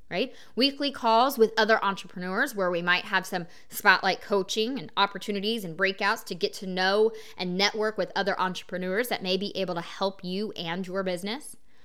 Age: 20-39